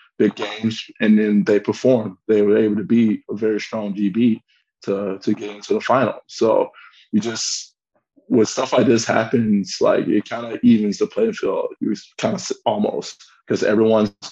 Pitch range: 105-130 Hz